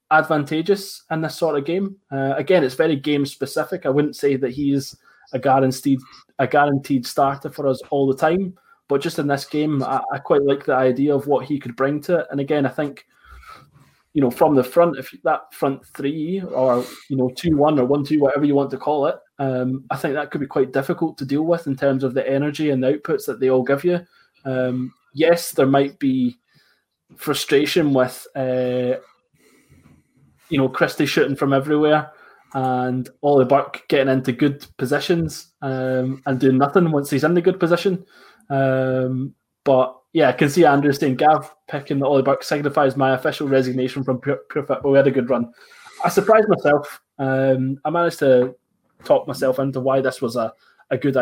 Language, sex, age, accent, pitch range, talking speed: English, male, 20-39, British, 130-150 Hz, 200 wpm